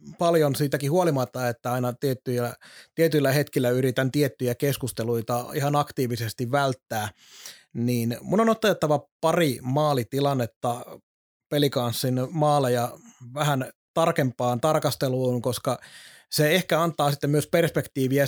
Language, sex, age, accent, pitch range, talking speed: Finnish, male, 30-49, native, 130-155 Hz, 100 wpm